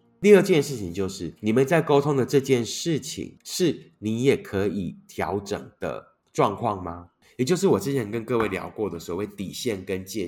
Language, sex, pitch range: Chinese, male, 100-155 Hz